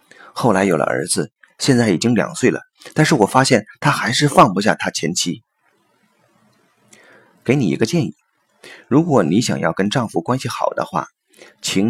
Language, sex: Chinese, male